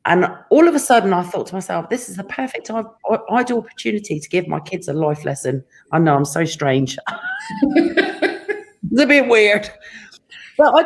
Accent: British